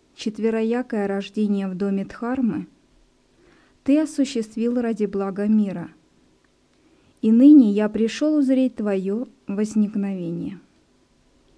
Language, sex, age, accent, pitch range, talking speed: Russian, female, 20-39, native, 205-260 Hz, 90 wpm